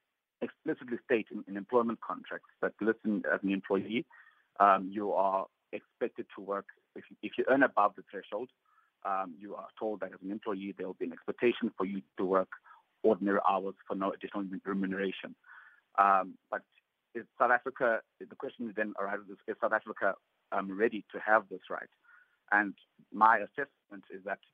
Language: English